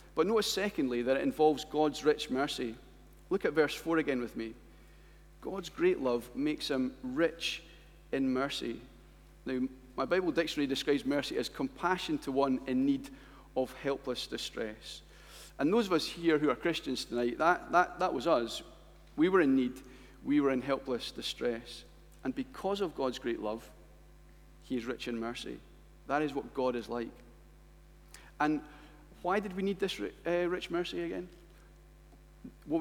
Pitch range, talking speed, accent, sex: 130-170 Hz, 160 wpm, British, male